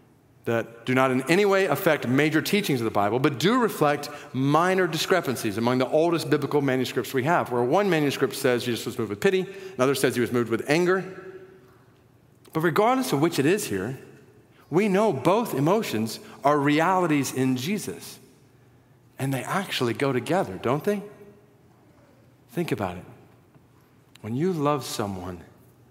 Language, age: English, 50-69